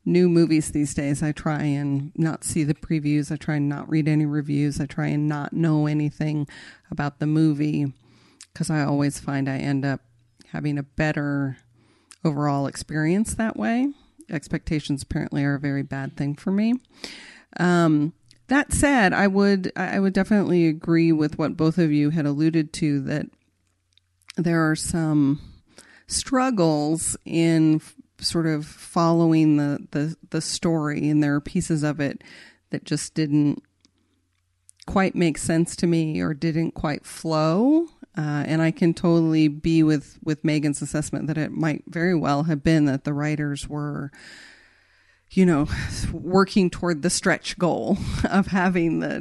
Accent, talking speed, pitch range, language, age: American, 155 wpm, 145-170 Hz, English, 40-59